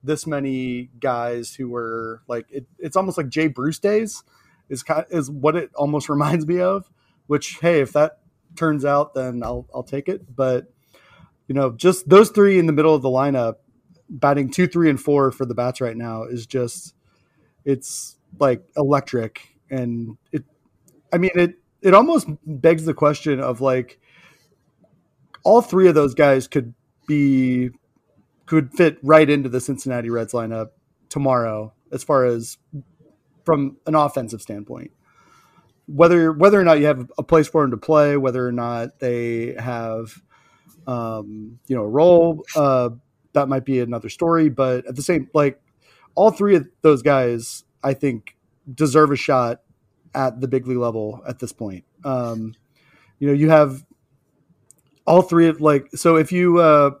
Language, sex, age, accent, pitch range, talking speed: English, male, 30-49, American, 125-160 Hz, 170 wpm